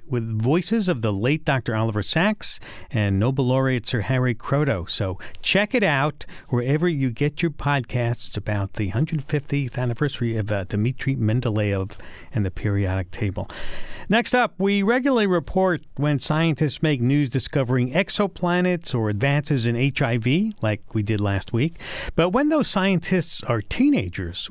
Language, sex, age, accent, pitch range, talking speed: English, male, 50-69, American, 115-170 Hz, 150 wpm